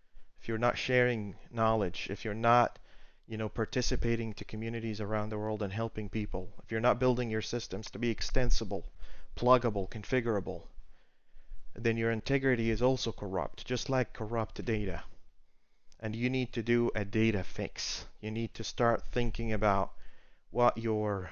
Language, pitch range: English, 105-125 Hz